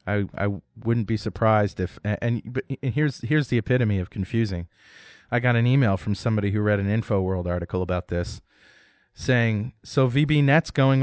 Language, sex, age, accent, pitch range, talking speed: English, male, 30-49, American, 95-120 Hz, 170 wpm